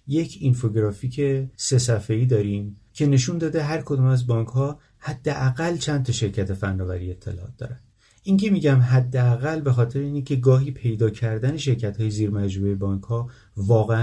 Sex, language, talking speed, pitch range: male, Persian, 145 wpm, 105-130 Hz